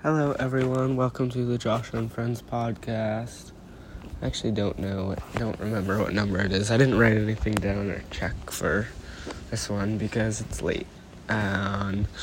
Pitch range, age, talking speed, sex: 100-120 Hz, 20-39, 170 wpm, male